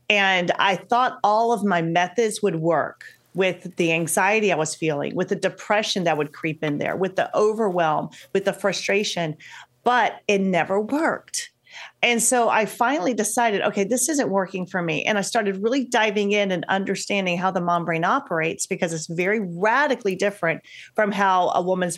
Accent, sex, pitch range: American, female, 175-230 Hz